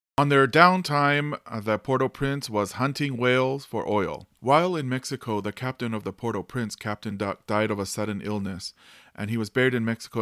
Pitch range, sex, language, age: 110-140 Hz, male, English, 40-59